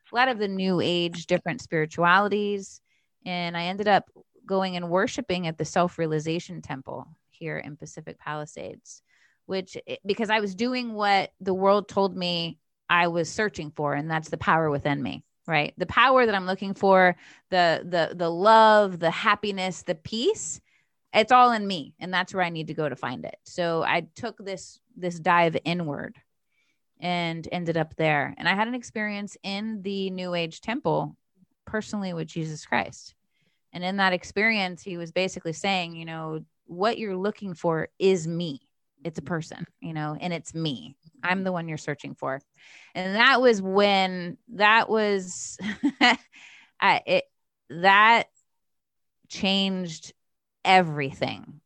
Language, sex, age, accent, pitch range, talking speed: English, female, 20-39, American, 165-200 Hz, 160 wpm